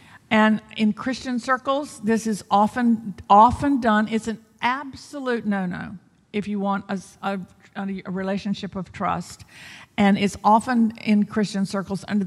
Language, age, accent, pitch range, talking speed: English, 50-69, American, 185-230 Hz, 140 wpm